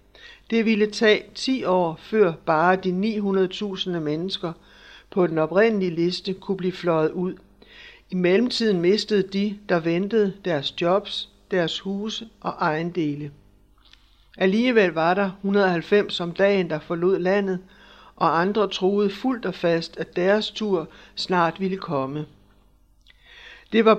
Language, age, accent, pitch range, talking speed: Danish, 60-79, native, 170-205 Hz, 135 wpm